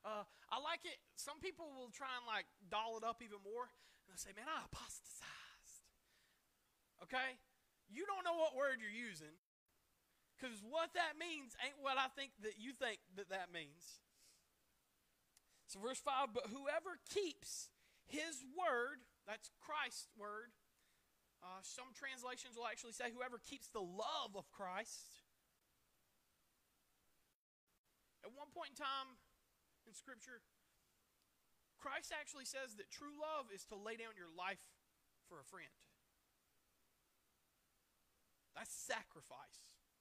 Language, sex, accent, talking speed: English, male, American, 135 wpm